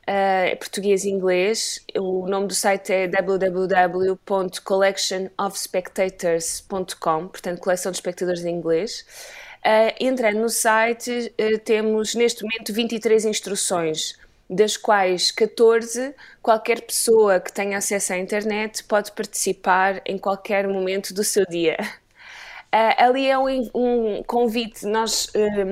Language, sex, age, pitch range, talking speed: Portuguese, female, 20-39, 190-225 Hz, 110 wpm